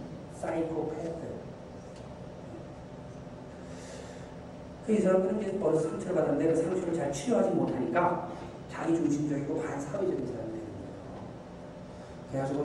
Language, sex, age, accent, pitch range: Korean, male, 40-59, native, 130-170 Hz